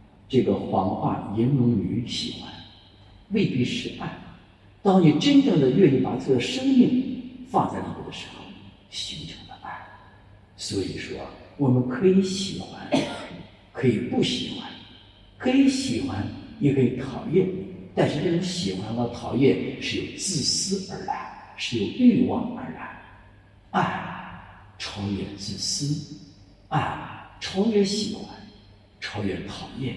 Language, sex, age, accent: English, male, 60-79, Chinese